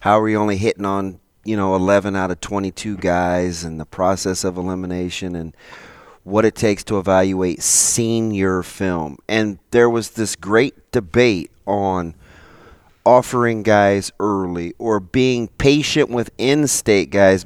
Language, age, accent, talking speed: English, 30-49, American, 145 wpm